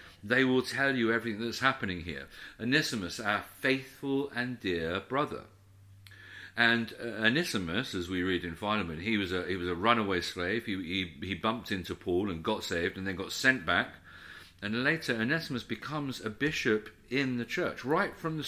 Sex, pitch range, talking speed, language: male, 95-120 Hz, 180 wpm, English